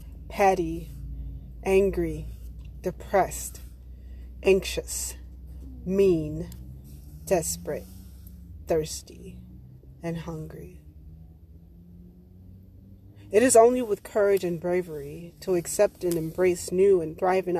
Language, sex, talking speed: English, female, 80 wpm